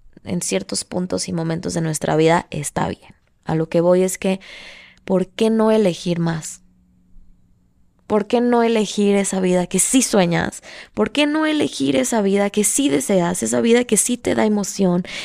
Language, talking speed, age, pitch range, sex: Spanish, 180 wpm, 20-39, 170-230 Hz, female